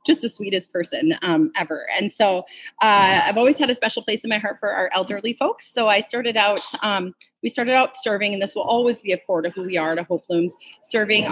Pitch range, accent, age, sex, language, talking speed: 180-225 Hz, American, 30-49, female, English, 245 wpm